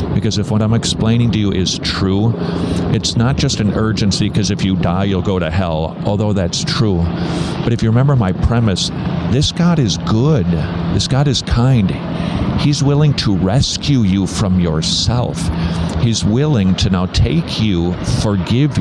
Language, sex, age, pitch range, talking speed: English, male, 50-69, 90-115 Hz, 170 wpm